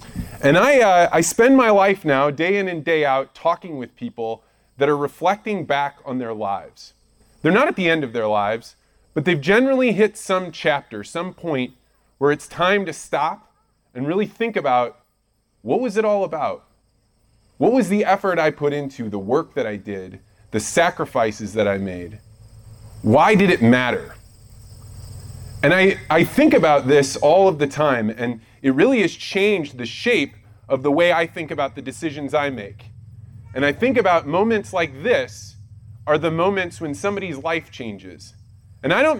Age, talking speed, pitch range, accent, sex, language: 30-49, 180 wpm, 110-180 Hz, American, male, English